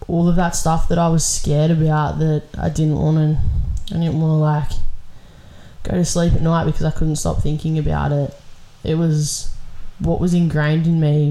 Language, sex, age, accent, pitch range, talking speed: English, female, 10-29, Australian, 150-165 Hz, 175 wpm